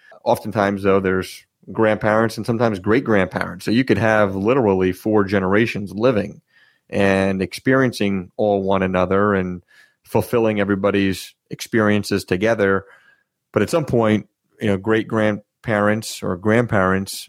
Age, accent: 30-49, American